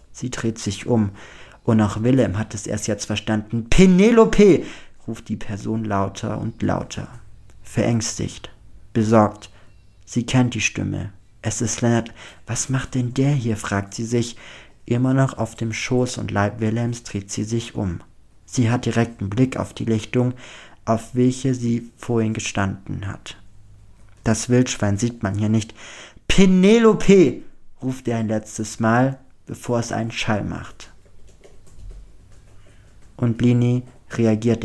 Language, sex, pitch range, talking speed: German, male, 105-120 Hz, 140 wpm